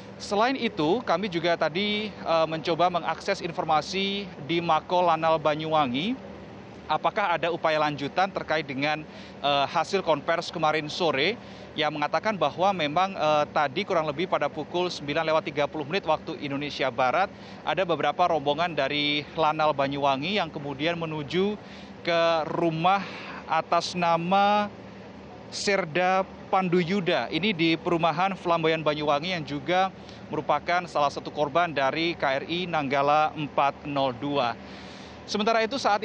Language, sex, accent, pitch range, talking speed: Indonesian, male, native, 150-185 Hz, 115 wpm